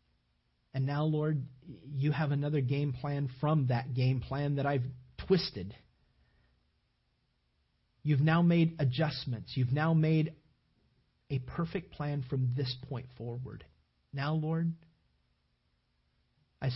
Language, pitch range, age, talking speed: English, 105-150 Hz, 40-59, 115 wpm